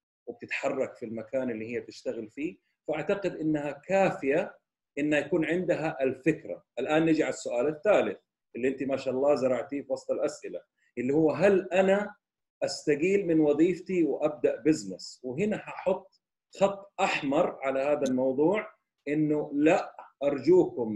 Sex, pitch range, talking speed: male, 130-180 Hz, 135 wpm